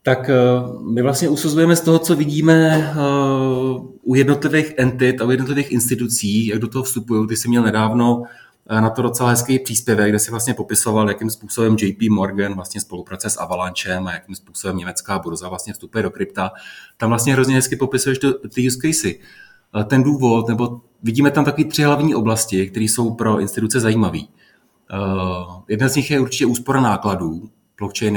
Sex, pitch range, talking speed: male, 95-125 Hz, 170 wpm